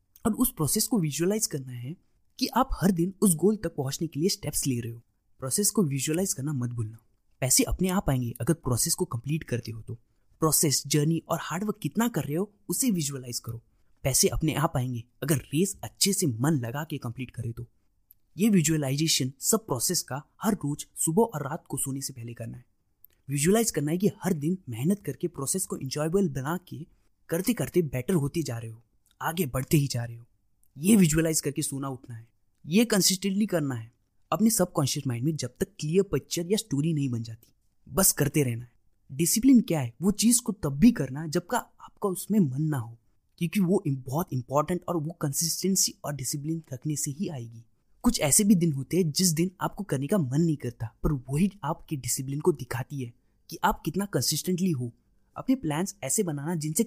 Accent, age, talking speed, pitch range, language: native, 20-39, 160 wpm, 125-185 Hz, Hindi